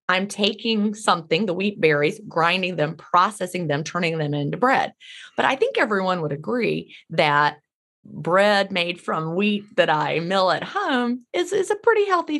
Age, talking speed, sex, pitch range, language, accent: 30-49, 170 wpm, female, 160-220 Hz, English, American